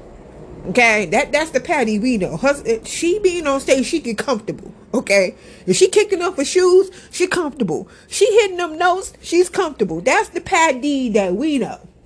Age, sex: 40-59, female